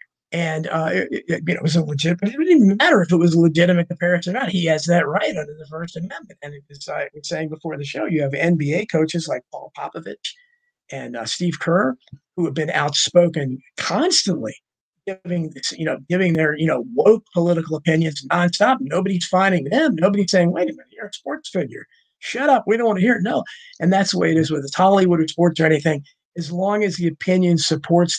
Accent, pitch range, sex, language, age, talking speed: American, 160-205 Hz, male, English, 50-69, 230 wpm